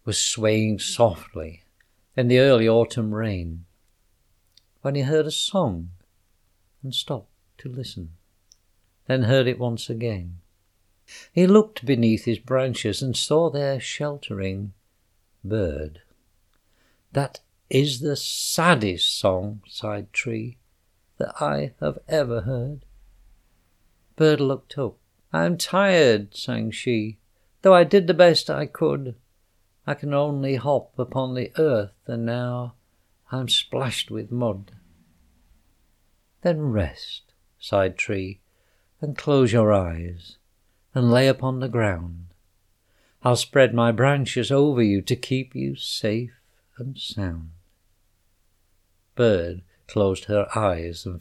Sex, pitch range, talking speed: male, 90-125 Hz, 120 wpm